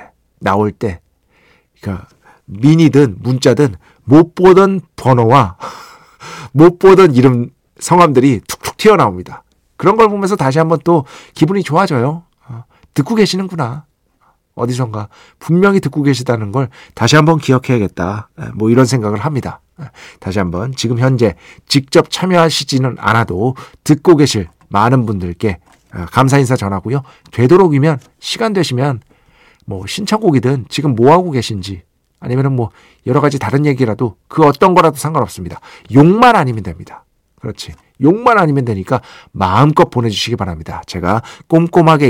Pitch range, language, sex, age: 110-160 Hz, Korean, male, 50-69